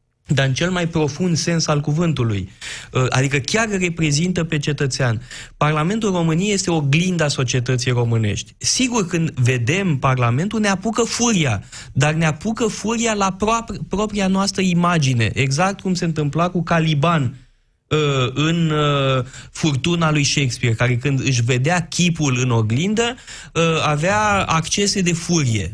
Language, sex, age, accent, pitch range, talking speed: Romanian, male, 20-39, native, 125-180 Hz, 135 wpm